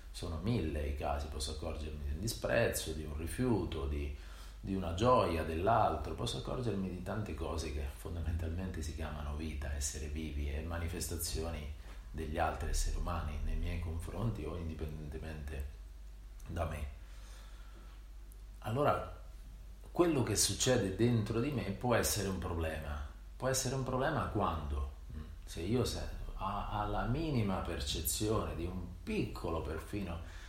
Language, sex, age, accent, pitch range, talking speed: English, male, 40-59, Italian, 75-100 Hz, 135 wpm